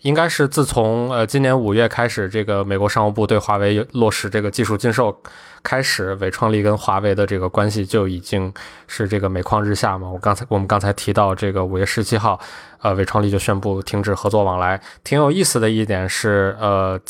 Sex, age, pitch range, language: male, 20-39, 100-120 Hz, Chinese